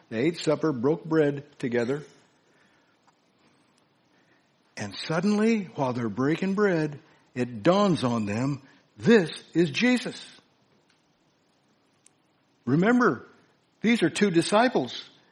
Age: 60-79